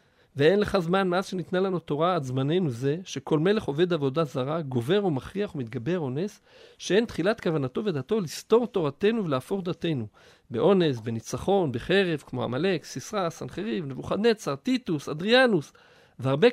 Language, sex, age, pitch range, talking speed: Hebrew, male, 50-69, 140-210 Hz, 140 wpm